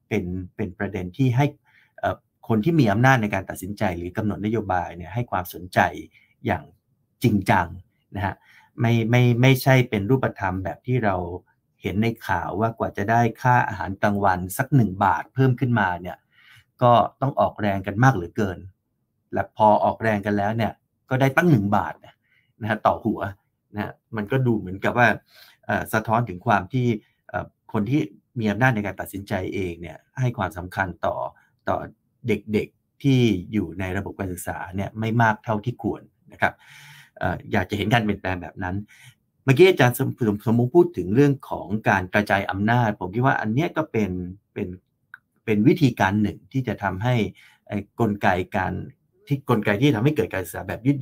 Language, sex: Thai, male